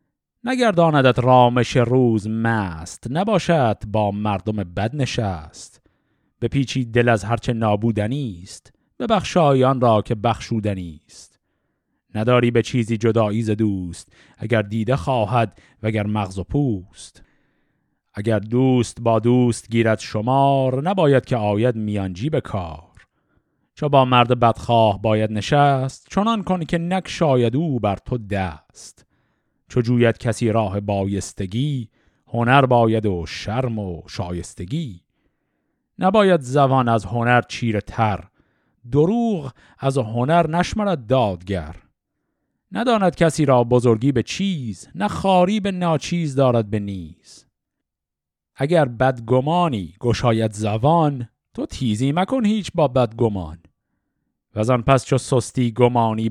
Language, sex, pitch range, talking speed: Persian, male, 105-135 Hz, 120 wpm